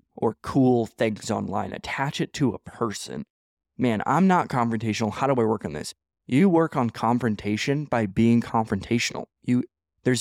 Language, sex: English, male